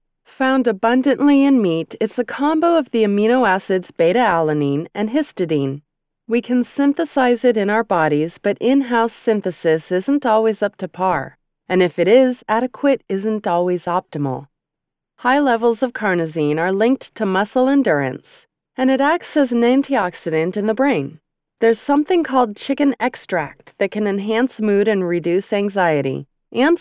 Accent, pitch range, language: American, 170-245 Hz, English